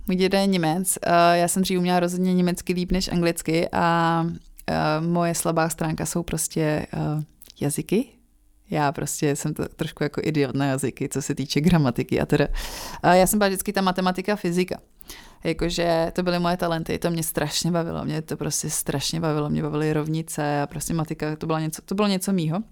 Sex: female